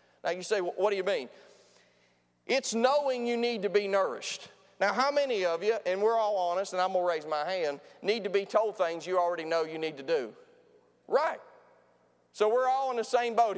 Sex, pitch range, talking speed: male, 185-245 Hz, 220 wpm